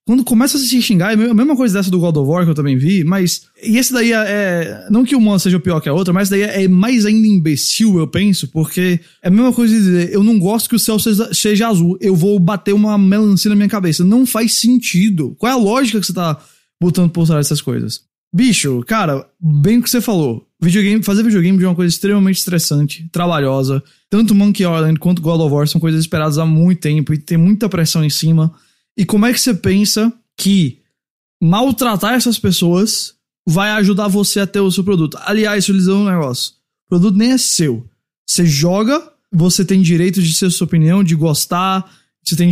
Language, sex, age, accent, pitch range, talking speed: English, male, 20-39, Brazilian, 165-210 Hz, 215 wpm